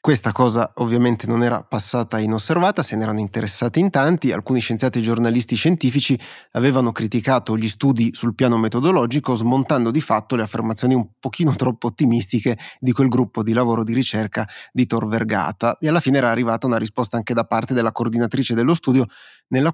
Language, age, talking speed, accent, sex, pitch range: Italian, 30-49, 180 wpm, native, male, 115-130 Hz